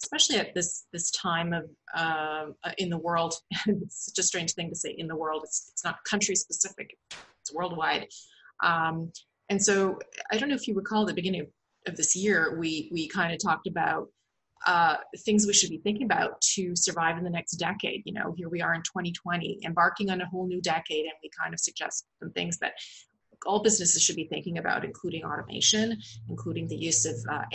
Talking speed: 210 wpm